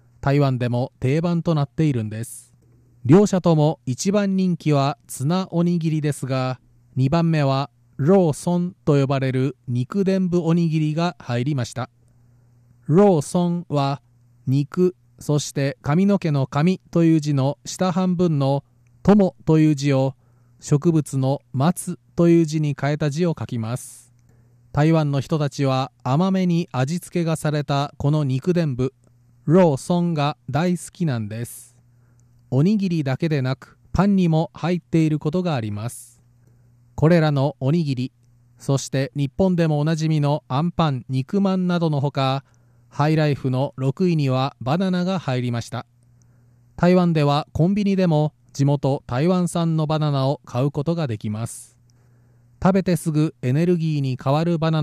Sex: male